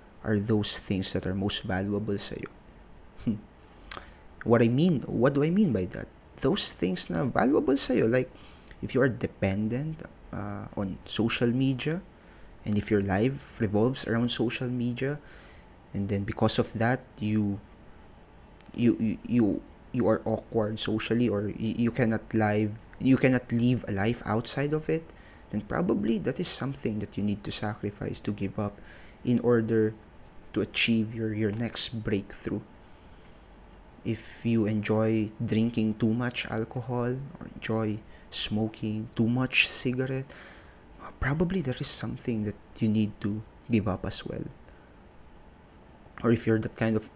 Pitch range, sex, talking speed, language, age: 105-120 Hz, male, 150 wpm, English, 20-39